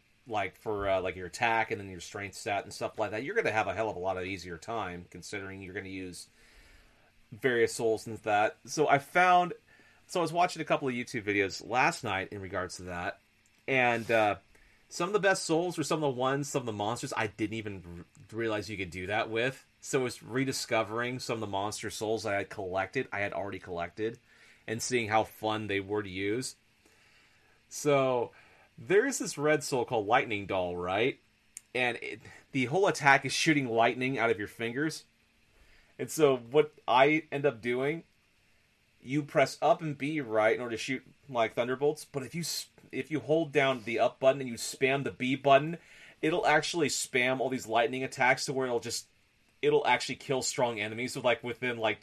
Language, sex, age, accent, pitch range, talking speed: English, male, 30-49, American, 105-140 Hz, 210 wpm